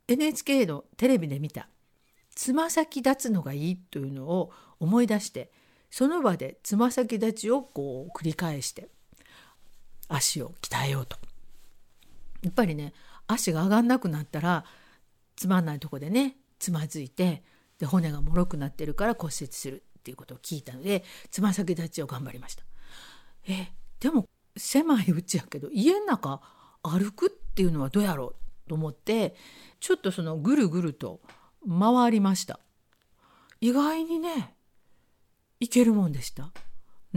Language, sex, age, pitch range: Japanese, female, 50-69, 160-245 Hz